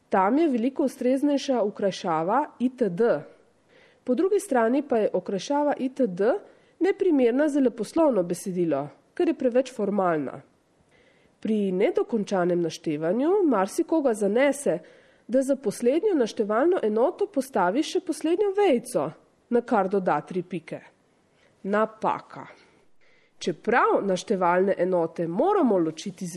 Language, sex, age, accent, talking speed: Italian, female, 30-49, Croatian, 105 wpm